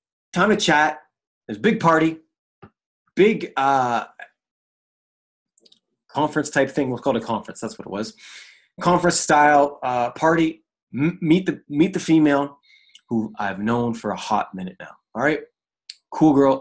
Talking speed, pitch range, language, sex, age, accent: 155 wpm, 110-140 Hz, English, male, 30-49, American